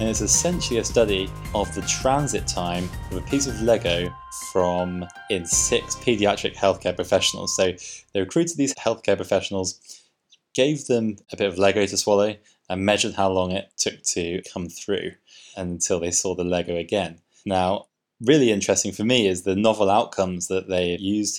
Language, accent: English, British